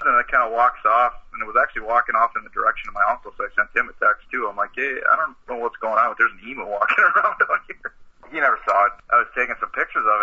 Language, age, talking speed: English, 30-49, 305 wpm